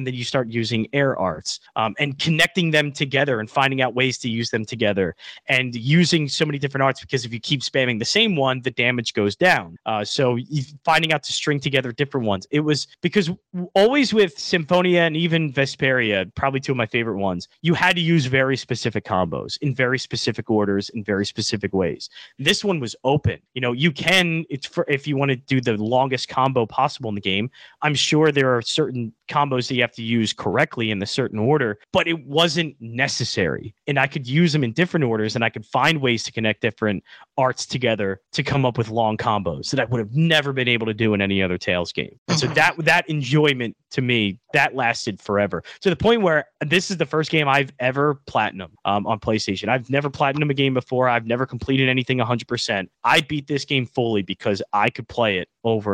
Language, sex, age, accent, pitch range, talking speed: English, male, 30-49, American, 115-150 Hz, 215 wpm